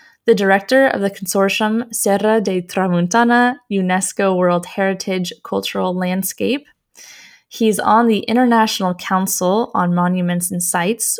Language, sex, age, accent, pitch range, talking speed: English, female, 10-29, American, 185-225 Hz, 120 wpm